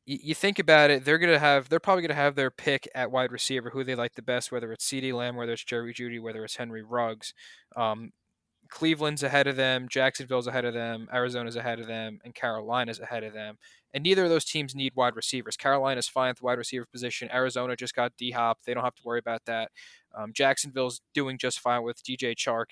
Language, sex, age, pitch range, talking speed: English, male, 20-39, 115-135 Hz, 225 wpm